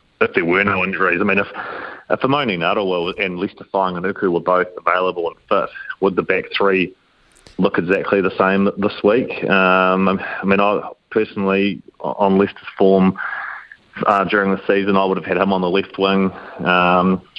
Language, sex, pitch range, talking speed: English, male, 90-100 Hz, 175 wpm